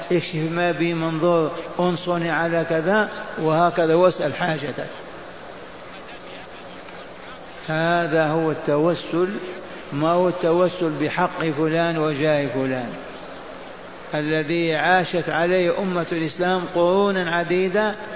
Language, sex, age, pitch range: Arabic, male, 60-79, 160-180 Hz